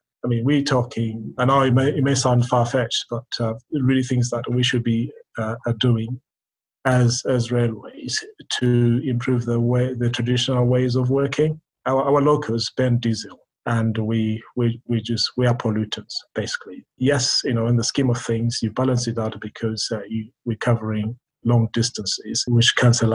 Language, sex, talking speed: English, male, 175 wpm